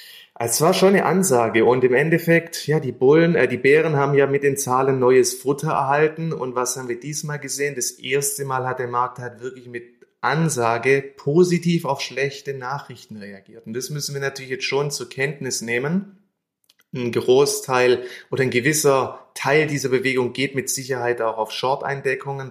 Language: German